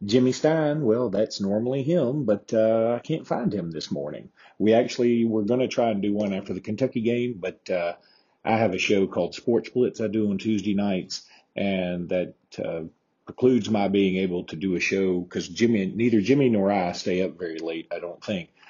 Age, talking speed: 40-59, 210 wpm